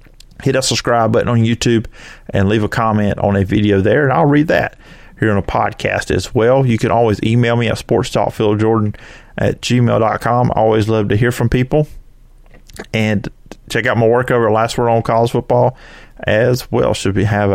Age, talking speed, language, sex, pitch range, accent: 30-49, 195 wpm, English, male, 105-120 Hz, American